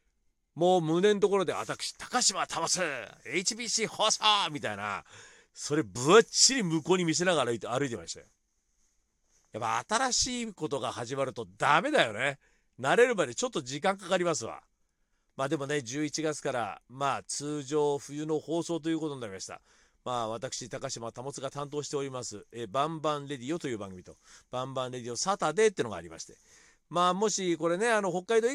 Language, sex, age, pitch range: Japanese, male, 40-59, 125-180 Hz